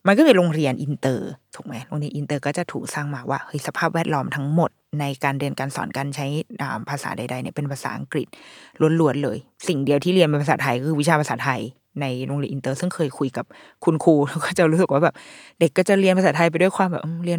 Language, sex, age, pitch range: Thai, female, 20-39, 140-180 Hz